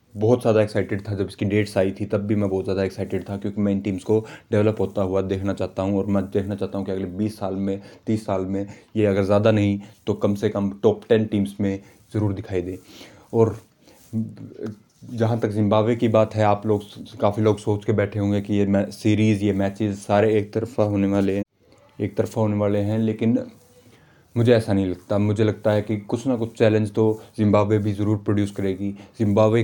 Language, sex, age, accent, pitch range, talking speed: Hindi, male, 20-39, native, 100-110 Hz, 210 wpm